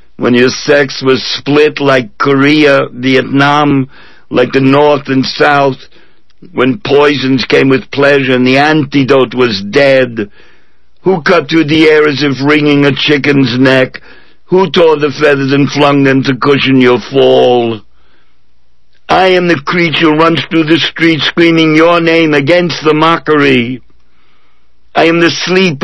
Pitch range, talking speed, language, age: 110-150 Hz, 150 wpm, English, 60-79